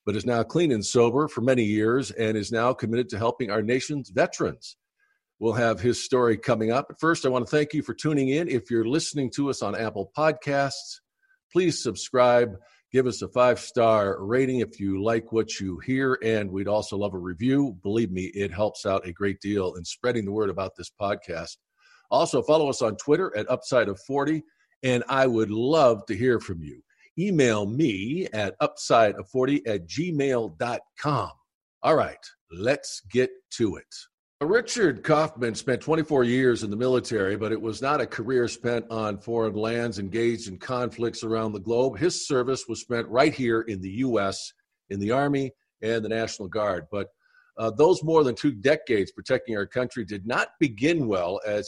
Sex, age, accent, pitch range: male, 50-69, American, 110-140 Hz